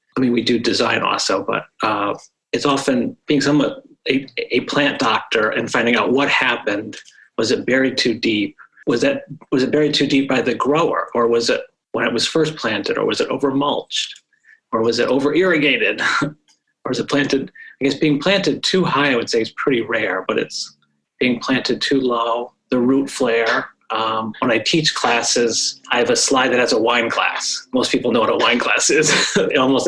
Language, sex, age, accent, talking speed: English, male, 30-49, American, 205 wpm